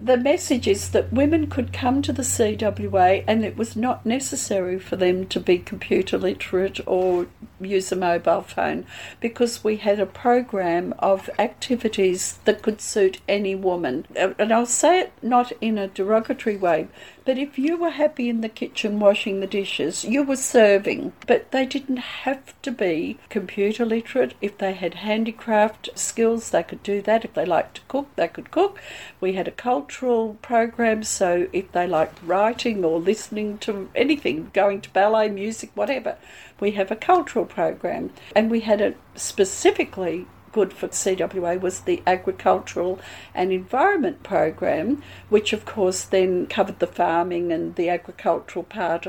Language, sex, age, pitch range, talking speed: English, female, 60-79, 185-245 Hz, 165 wpm